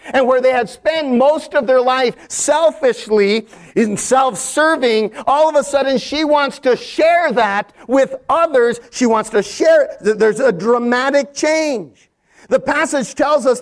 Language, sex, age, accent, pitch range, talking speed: English, male, 40-59, American, 235-280 Hz, 160 wpm